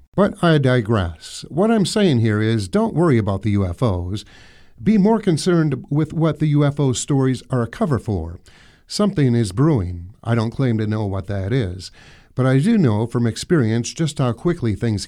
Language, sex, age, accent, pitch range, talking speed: English, male, 50-69, American, 105-155 Hz, 185 wpm